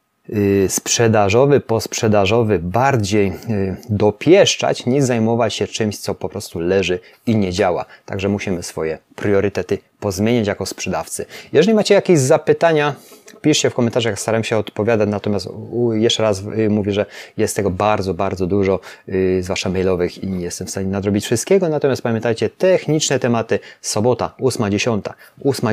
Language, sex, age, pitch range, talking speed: Polish, male, 30-49, 100-125 Hz, 140 wpm